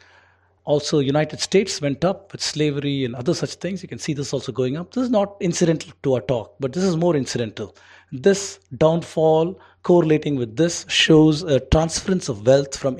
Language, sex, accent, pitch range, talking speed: English, male, Indian, 130-180 Hz, 190 wpm